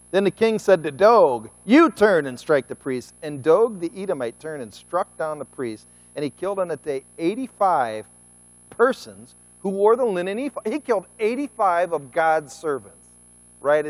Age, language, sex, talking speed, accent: 40-59, English, male, 175 wpm, American